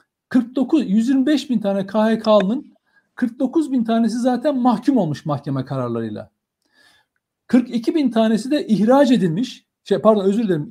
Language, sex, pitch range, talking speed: Turkish, male, 200-260 Hz, 130 wpm